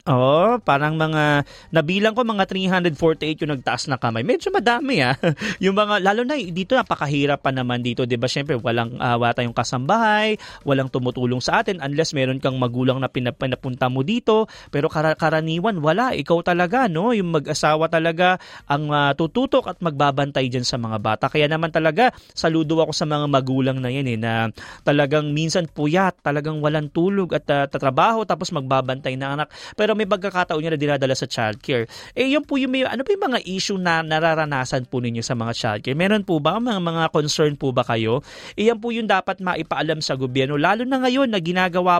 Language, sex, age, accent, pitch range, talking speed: English, male, 20-39, Filipino, 135-185 Hz, 190 wpm